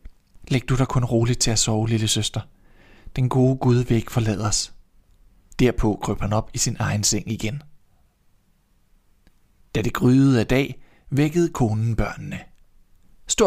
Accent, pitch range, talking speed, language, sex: native, 105-140 Hz, 155 wpm, Danish, male